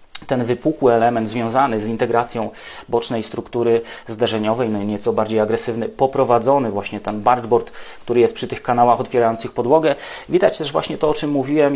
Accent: Polish